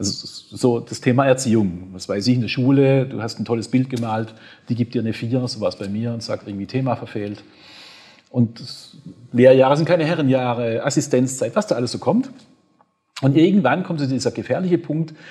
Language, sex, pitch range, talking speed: German, male, 115-150 Hz, 200 wpm